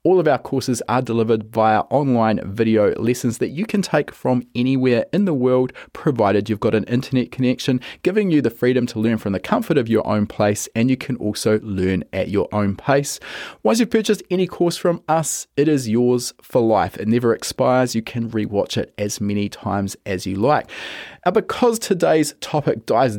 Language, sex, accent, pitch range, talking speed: English, male, Australian, 110-135 Hz, 195 wpm